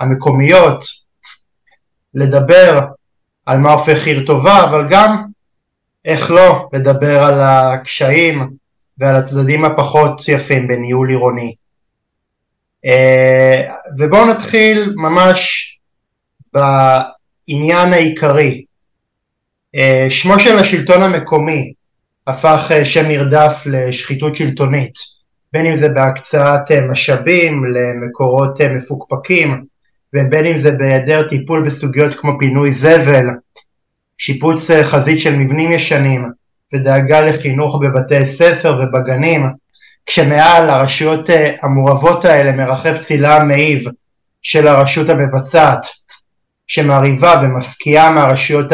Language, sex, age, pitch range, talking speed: Hebrew, male, 20-39, 135-155 Hz, 90 wpm